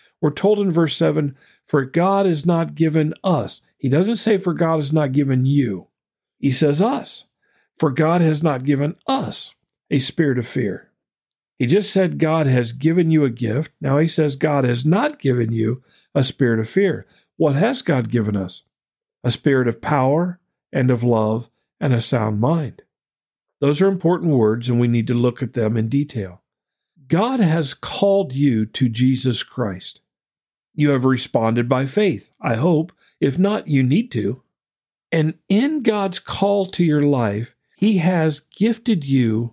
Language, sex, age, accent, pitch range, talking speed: English, male, 50-69, American, 125-170 Hz, 170 wpm